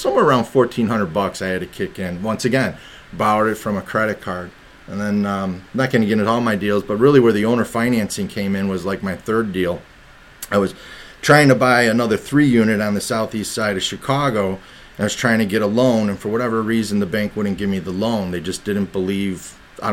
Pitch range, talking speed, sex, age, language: 95-115 Hz, 240 wpm, male, 30-49, English